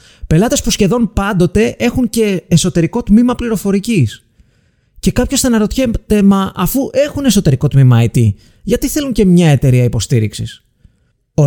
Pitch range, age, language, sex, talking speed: 125-205 Hz, 30-49, Greek, male, 135 wpm